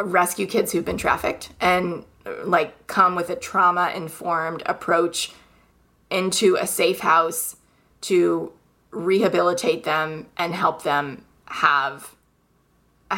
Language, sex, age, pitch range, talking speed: English, female, 20-39, 160-195 Hz, 110 wpm